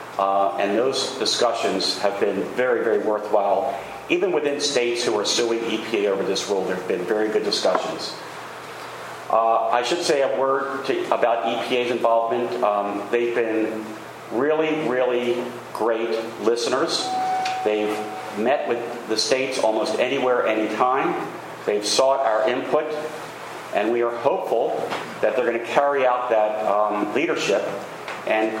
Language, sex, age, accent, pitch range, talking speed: English, male, 40-59, American, 105-130 Hz, 140 wpm